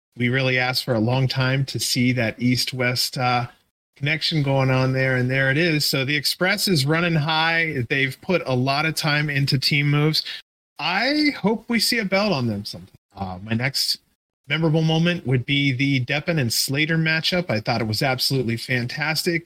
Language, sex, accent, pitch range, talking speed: English, male, American, 130-165 Hz, 190 wpm